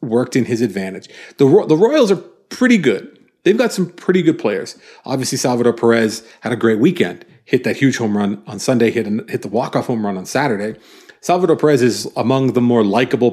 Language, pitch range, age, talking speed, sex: English, 120-175 Hz, 40-59, 205 wpm, male